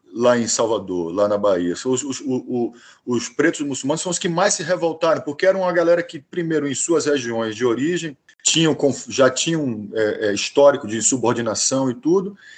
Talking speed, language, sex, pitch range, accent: 180 wpm, Portuguese, male, 125-195 Hz, Brazilian